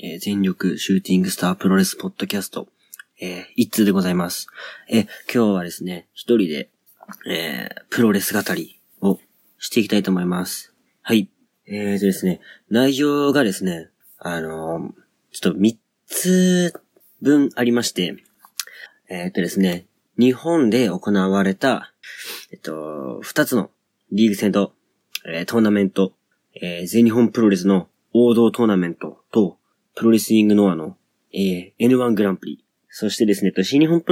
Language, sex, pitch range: Japanese, male, 95-115 Hz